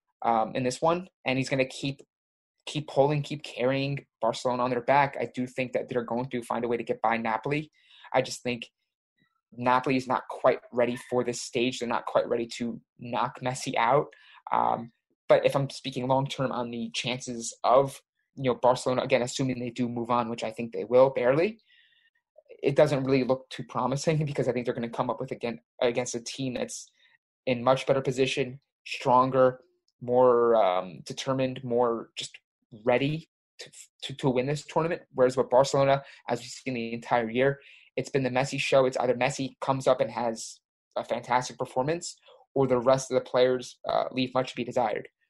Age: 20-39